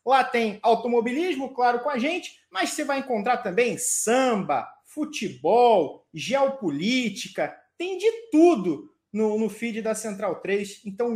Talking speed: 130 wpm